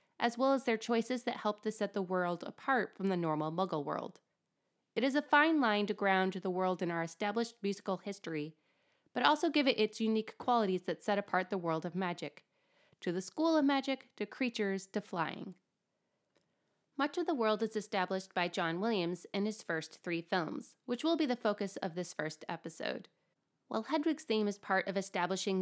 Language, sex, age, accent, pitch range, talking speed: English, female, 20-39, American, 175-240 Hz, 195 wpm